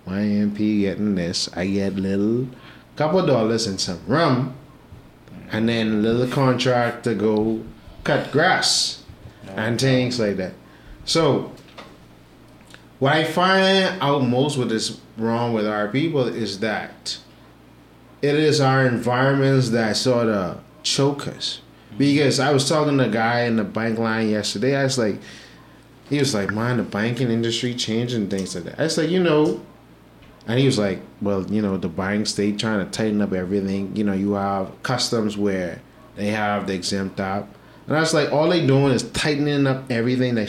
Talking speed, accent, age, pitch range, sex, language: 175 wpm, American, 30-49, 105-140 Hz, male, English